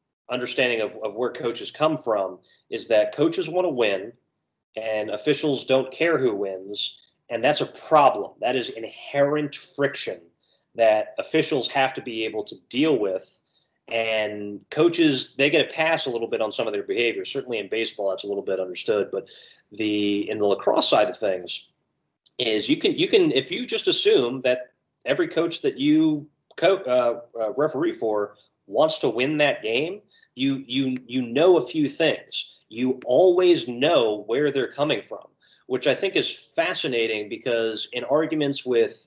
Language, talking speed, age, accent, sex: English, 170 wpm, 30-49, American, male